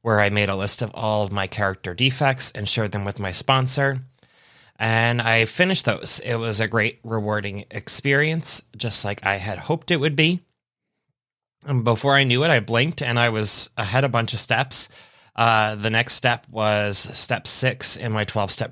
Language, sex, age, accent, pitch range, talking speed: English, male, 20-39, American, 100-120 Hz, 190 wpm